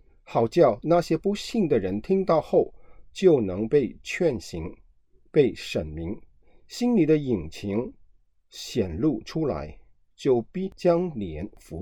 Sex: male